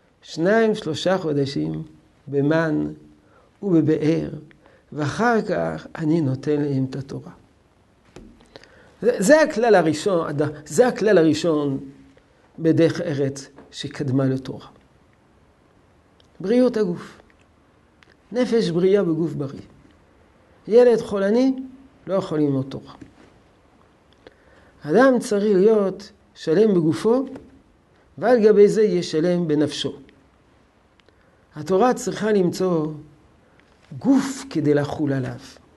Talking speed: 85 wpm